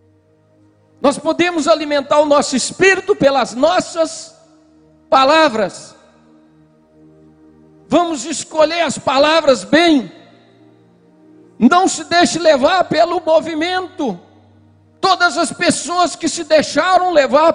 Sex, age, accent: male, 60-79, Brazilian